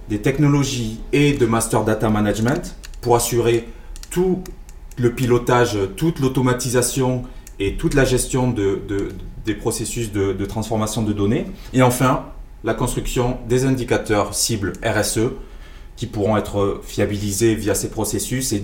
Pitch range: 105-130 Hz